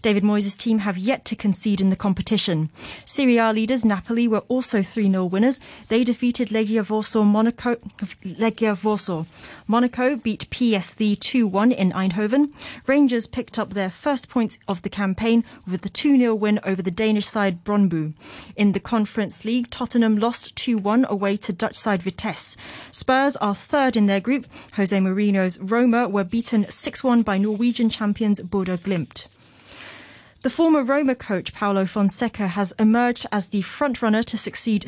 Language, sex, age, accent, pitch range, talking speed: English, female, 30-49, British, 195-235 Hz, 155 wpm